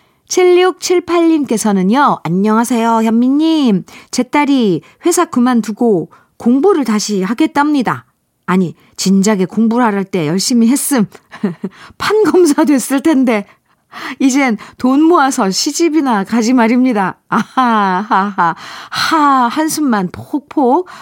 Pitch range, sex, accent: 195-280 Hz, female, native